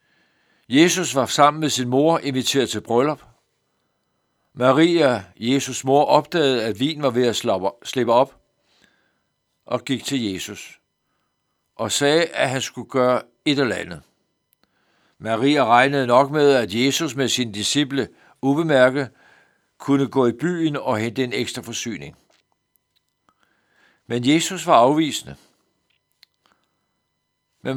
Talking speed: 125 wpm